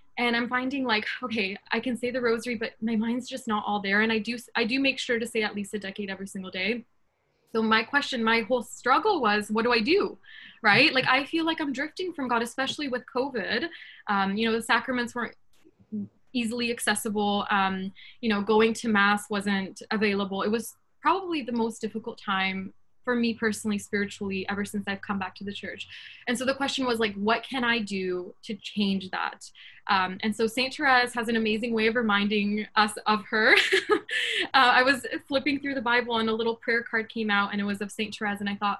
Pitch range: 210-250 Hz